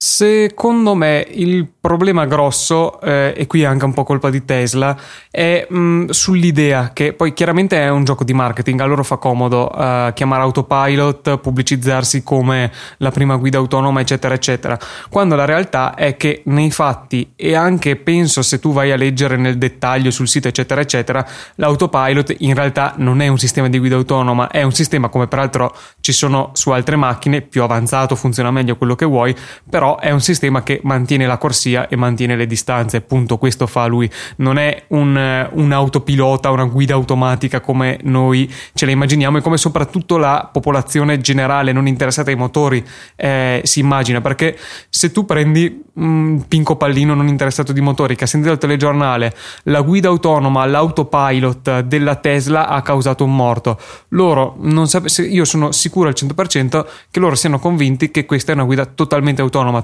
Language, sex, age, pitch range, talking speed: Italian, male, 20-39, 130-150 Hz, 175 wpm